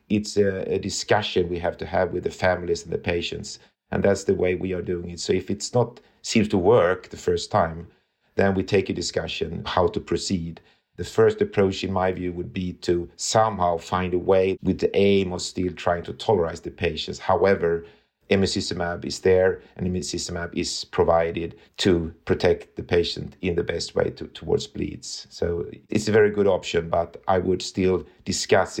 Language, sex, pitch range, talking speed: English, male, 85-105 Hz, 190 wpm